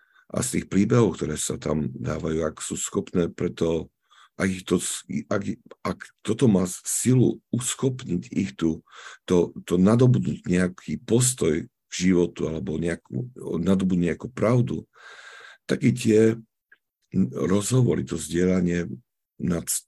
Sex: male